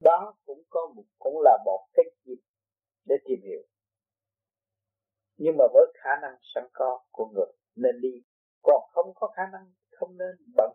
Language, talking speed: Vietnamese, 175 wpm